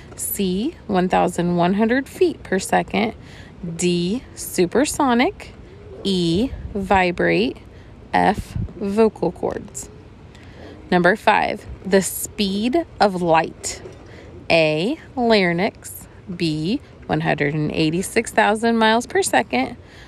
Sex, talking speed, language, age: female, 75 wpm, English, 30-49